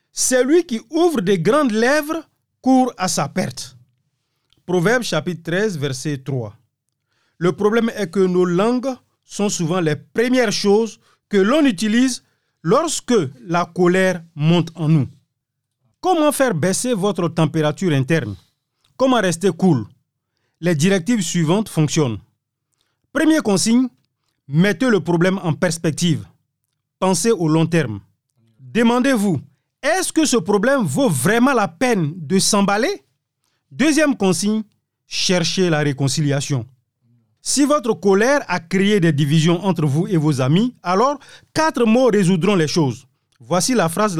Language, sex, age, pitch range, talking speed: French, male, 40-59, 140-225 Hz, 130 wpm